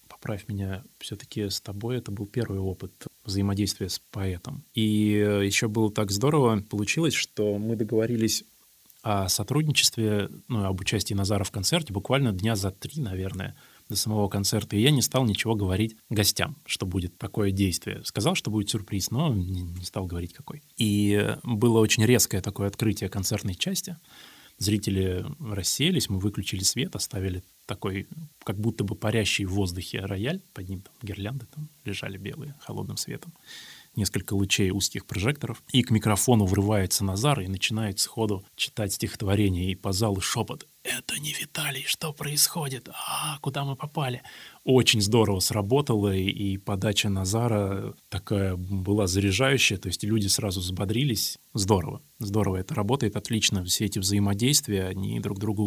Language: Russian